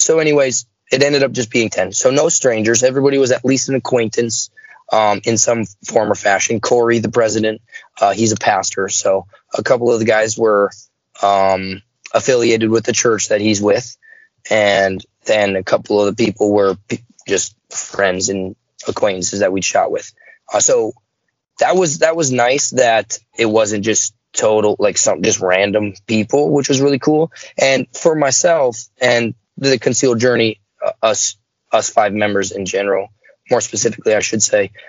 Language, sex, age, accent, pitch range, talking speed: English, male, 20-39, American, 105-130 Hz, 175 wpm